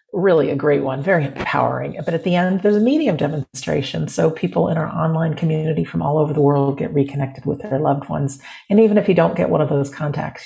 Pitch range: 140-170 Hz